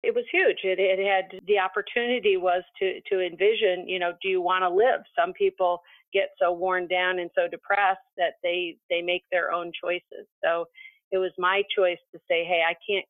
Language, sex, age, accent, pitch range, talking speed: English, female, 40-59, American, 170-190 Hz, 205 wpm